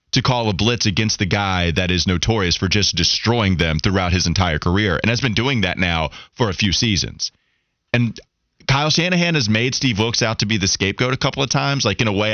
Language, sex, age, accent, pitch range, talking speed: English, male, 30-49, American, 95-135 Hz, 235 wpm